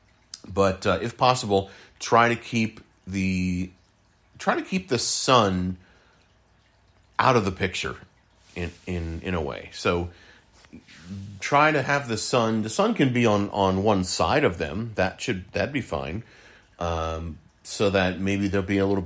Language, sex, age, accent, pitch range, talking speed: English, male, 40-59, American, 90-105 Hz, 160 wpm